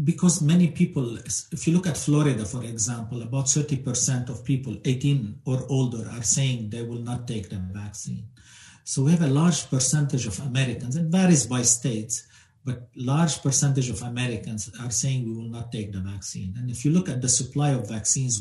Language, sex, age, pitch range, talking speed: English, male, 50-69, 115-135 Hz, 195 wpm